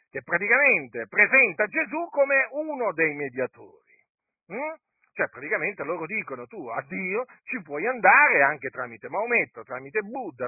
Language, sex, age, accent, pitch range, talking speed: Italian, male, 50-69, native, 160-240 Hz, 135 wpm